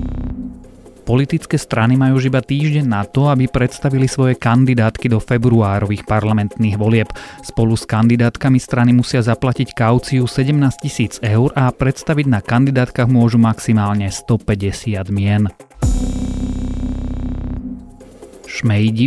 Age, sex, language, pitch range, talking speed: 30-49, male, Slovak, 105-130 Hz, 105 wpm